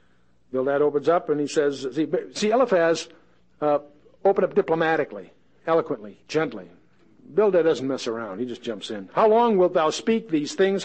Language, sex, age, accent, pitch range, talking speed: English, male, 60-79, American, 120-180 Hz, 165 wpm